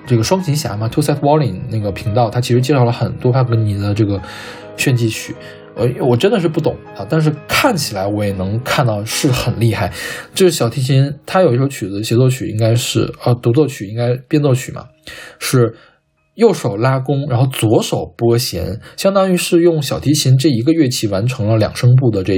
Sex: male